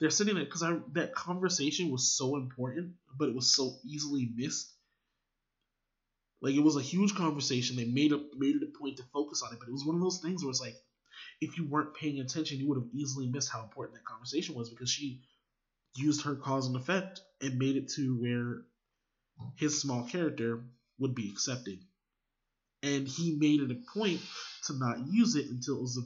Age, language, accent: 20-39, English, American